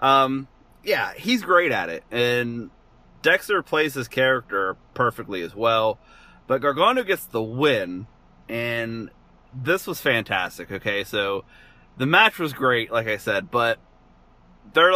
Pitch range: 110-140 Hz